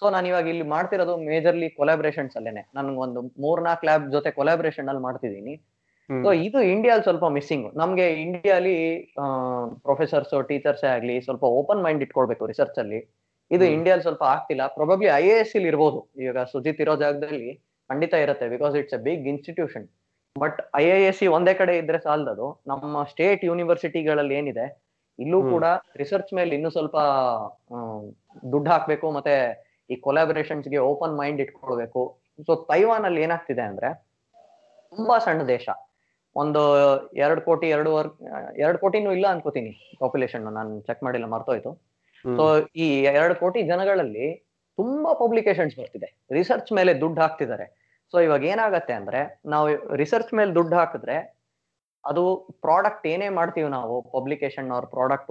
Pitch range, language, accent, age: 140-175 Hz, Kannada, native, 20-39